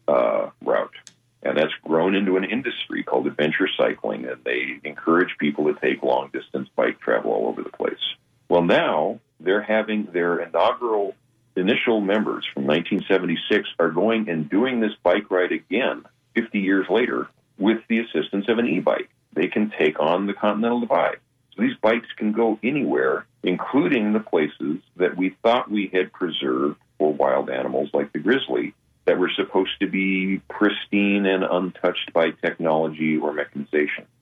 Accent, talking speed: American, 160 wpm